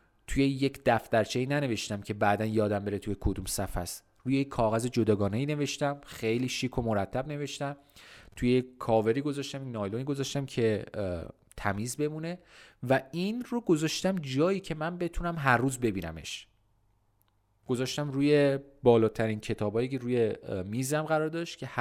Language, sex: Persian, male